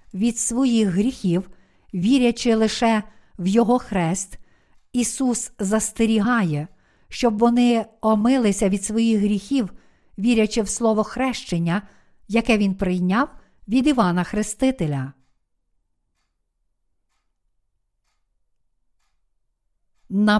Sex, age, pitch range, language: female, 50-69, 190-245 Hz, Ukrainian